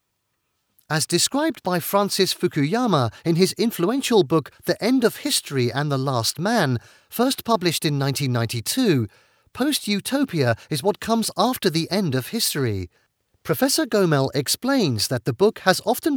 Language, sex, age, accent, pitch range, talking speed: English, male, 40-59, British, 135-225 Hz, 140 wpm